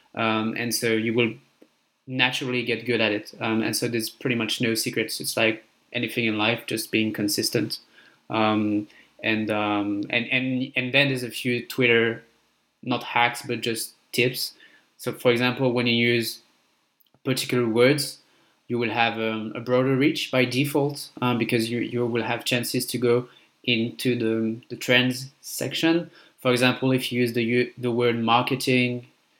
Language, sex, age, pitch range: English, male, 20-39, 115-130 Hz